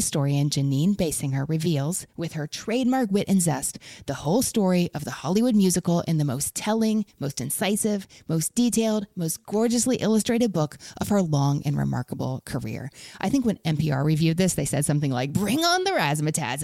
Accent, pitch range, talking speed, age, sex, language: American, 150-205 Hz, 175 wpm, 30-49, female, English